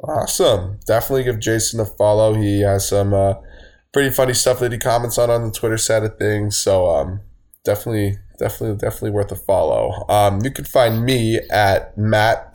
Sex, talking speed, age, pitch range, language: male, 180 wpm, 10-29, 100-115 Hz, English